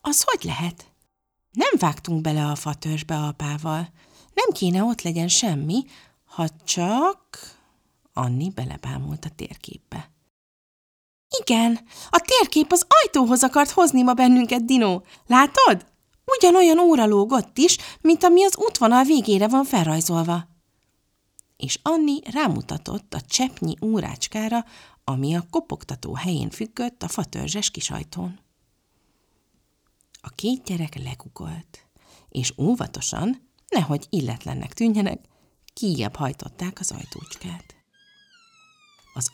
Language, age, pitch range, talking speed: Hungarian, 30-49, 155-255 Hz, 105 wpm